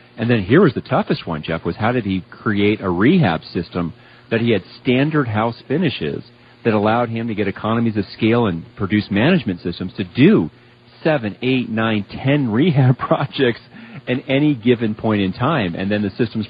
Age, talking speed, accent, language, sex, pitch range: 40-59, 190 wpm, American, English, male, 95-120 Hz